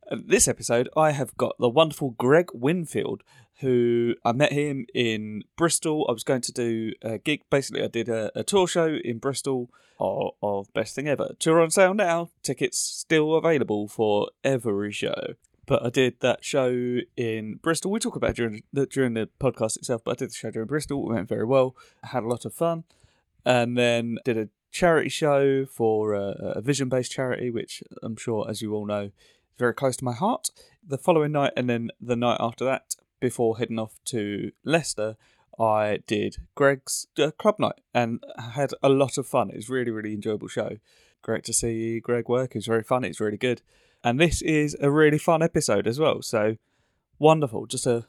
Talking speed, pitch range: 200 wpm, 115-145 Hz